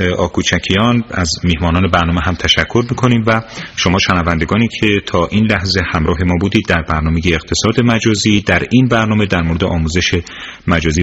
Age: 30-49